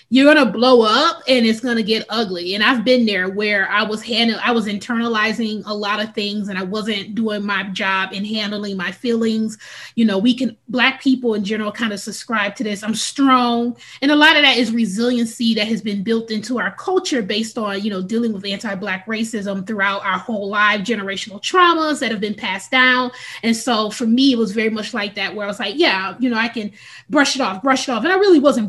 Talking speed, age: 230 wpm, 20-39